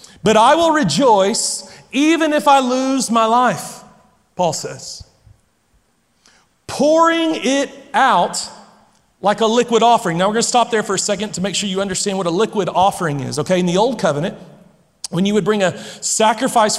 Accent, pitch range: American, 165-215 Hz